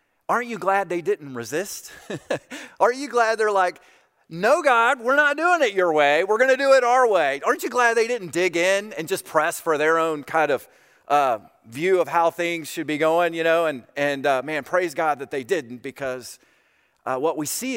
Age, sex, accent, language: 30-49, male, American, English